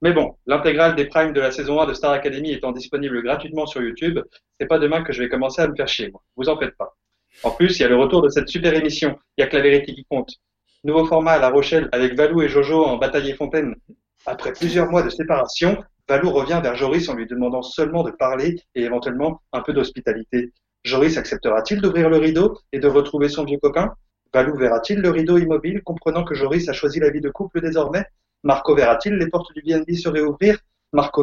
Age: 30-49